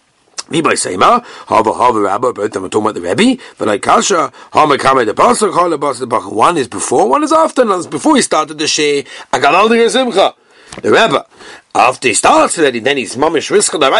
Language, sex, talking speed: English, male, 140 wpm